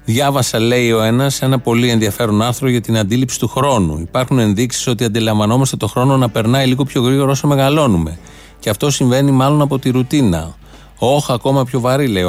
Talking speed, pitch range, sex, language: 185 wpm, 115-155 Hz, male, Greek